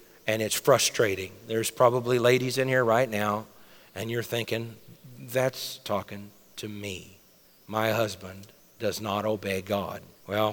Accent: American